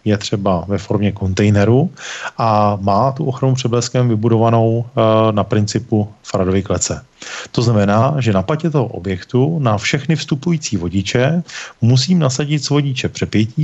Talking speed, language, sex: 135 wpm, Czech, male